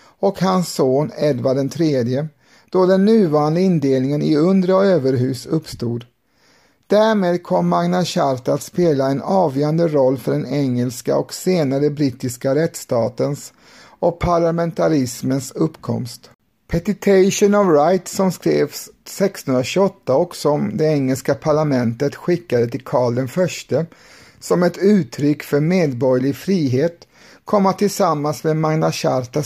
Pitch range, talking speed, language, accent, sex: 135-180 Hz, 120 wpm, Swedish, native, male